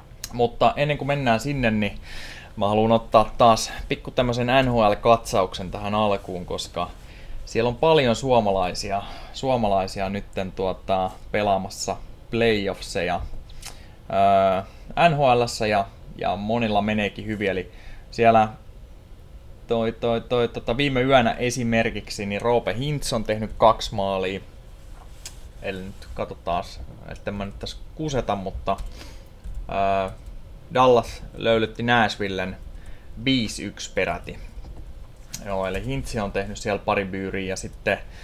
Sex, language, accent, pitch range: male, Finnish, native, 95-115 Hz